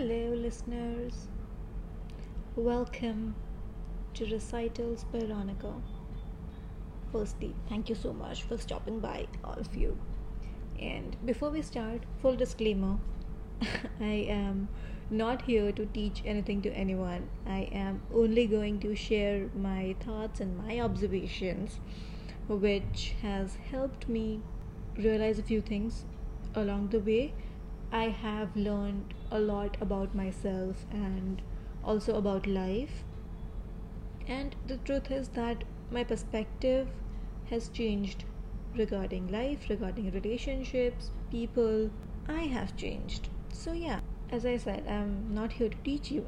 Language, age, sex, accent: English, 20-39, female, Indian